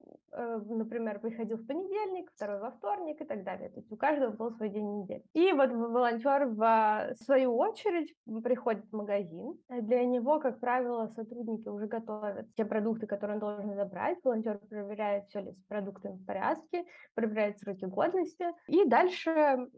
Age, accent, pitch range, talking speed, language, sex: 20-39, native, 210-260 Hz, 160 wpm, Russian, female